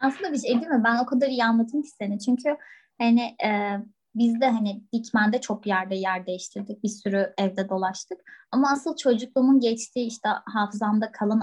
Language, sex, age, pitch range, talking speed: Turkish, female, 20-39, 205-265 Hz, 175 wpm